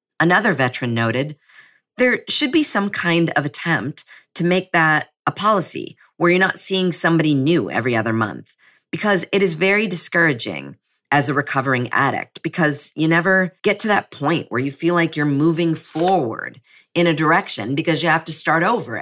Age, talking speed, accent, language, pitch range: 40-59, 175 wpm, American, English, 140-185 Hz